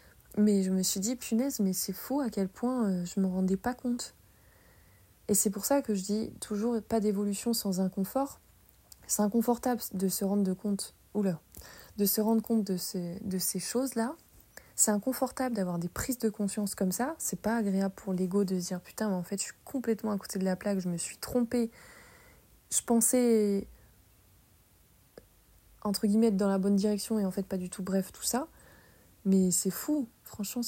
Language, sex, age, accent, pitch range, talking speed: French, female, 20-39, French, 190-230 Hz, 200 wpm